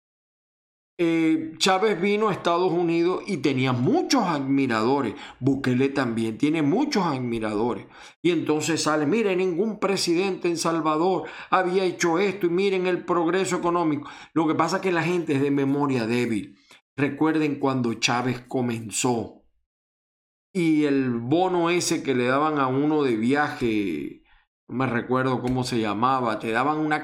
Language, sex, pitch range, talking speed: Spanish, male, 130-170 Hz, 145 wpm